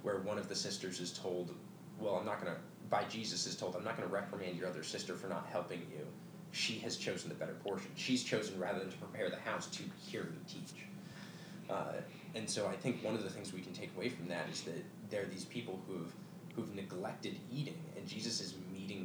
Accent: American